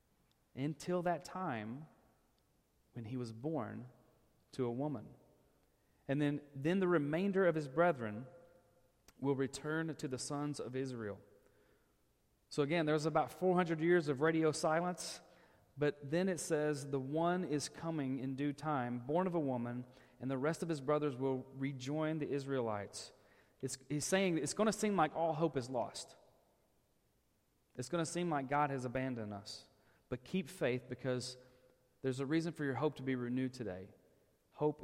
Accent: American